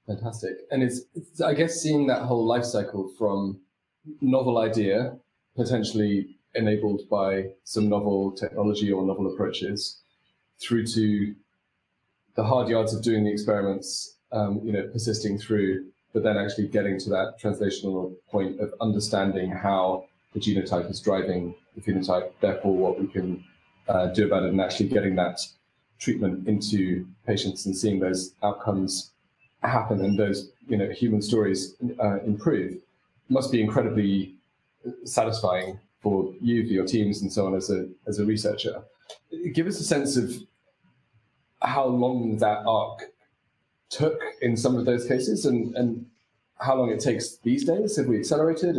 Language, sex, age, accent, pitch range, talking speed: English, male, 30-49, British, 95-115 Hz, 155 wpm